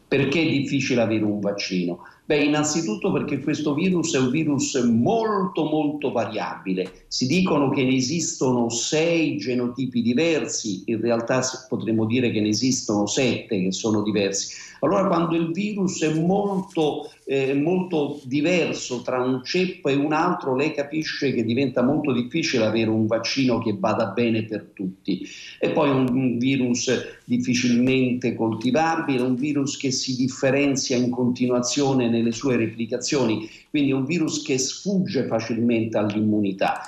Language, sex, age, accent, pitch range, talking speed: Italian, male, 50-69, native, 115-145 Hz, 145 wpm